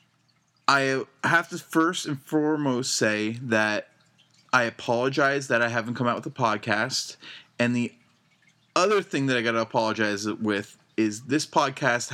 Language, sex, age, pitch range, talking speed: English, male, 20-39, 105-150 Hz, 155 wpm